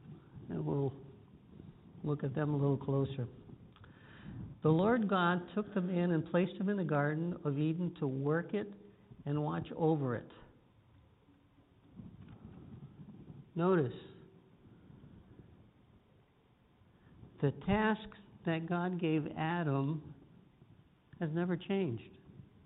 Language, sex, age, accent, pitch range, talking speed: English, male, 60-79, American, 135-175 Hz, 105 wpm